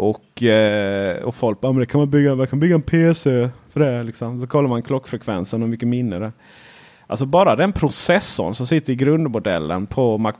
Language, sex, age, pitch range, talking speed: Swedish, male, 30-49, 115-150 Hz, 195 wpm